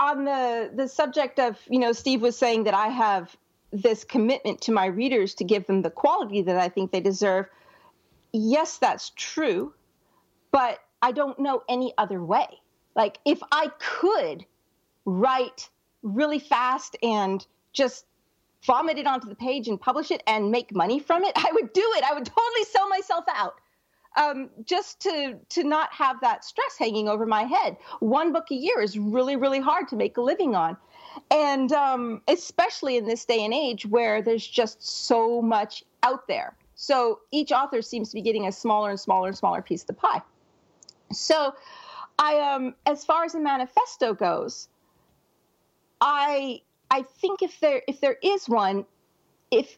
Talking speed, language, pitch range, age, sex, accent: 175 wpm, English, 220-300 Hz, 40-59, female, American